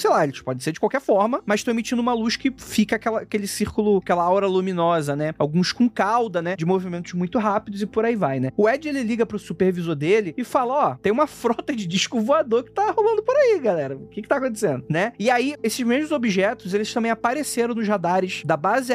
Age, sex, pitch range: 20-39, male, 170-235 Hz